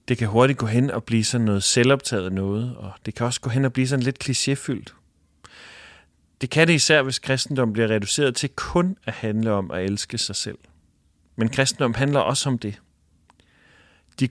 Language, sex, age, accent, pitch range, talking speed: English, male, 40-59, Danish, 100-135 Hz, 195 wpm